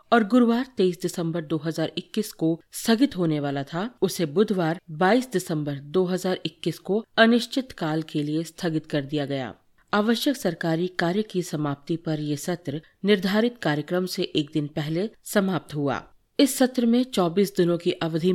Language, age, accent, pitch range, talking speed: Hindi, 40-59, native, 160-205 Hz, 155 wpm